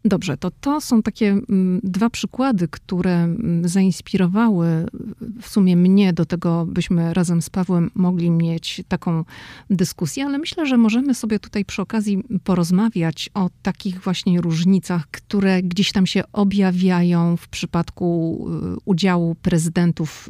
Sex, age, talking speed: female, 40-59, 130 wpm